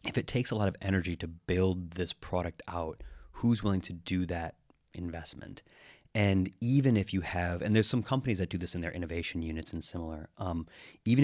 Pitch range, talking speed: 85-105 Hz, 210 wpm